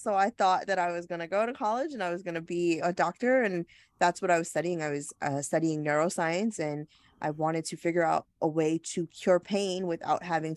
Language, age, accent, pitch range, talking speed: English, 20-39, American, 150-175 Hz, 245 wpm